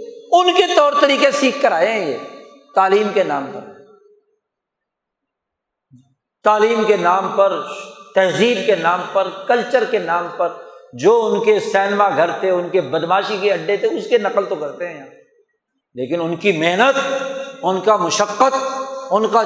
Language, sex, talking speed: Urdu, male, 160 wpm